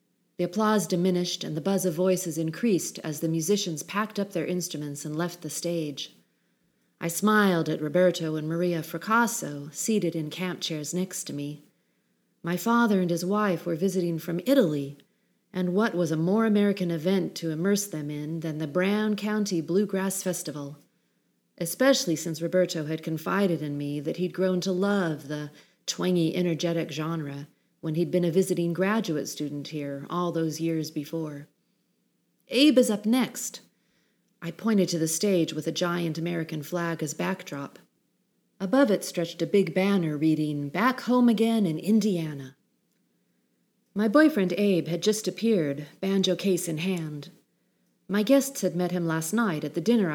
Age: 40-59